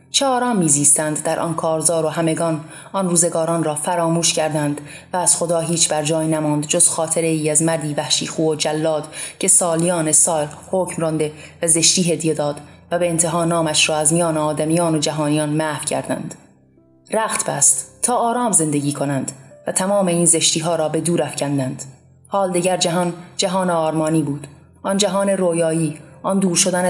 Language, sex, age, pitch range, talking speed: Persian, female, 30-49, 155-175 Hz, 170 wpm